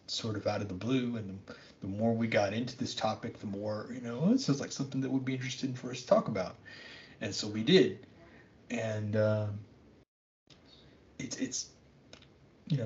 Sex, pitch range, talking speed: male, 100-125 Hz, 185 wpm